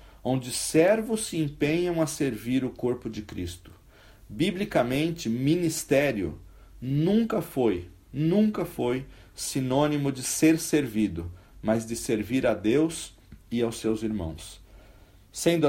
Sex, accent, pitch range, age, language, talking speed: male, Brazilian, 110-160 Hz, 40-59, Portuguese, 115 wpm